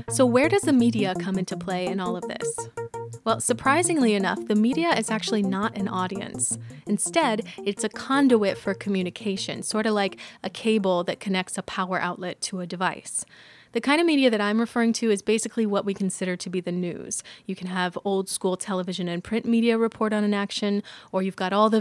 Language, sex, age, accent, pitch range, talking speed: English, female, 20-39, American, 185-225 Hz, 205 wpm